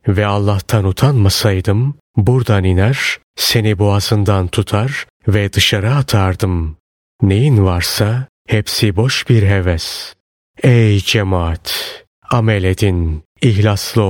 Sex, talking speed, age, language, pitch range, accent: male, 95 wpm, 30-49, Turkish, 95-120 Hz, native